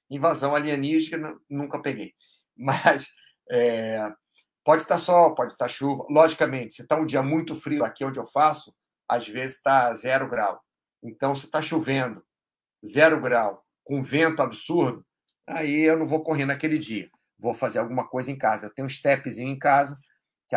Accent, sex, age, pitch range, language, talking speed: Brazilian, male, 50-69, 120-150 Hz, Portuguese, 165 wpm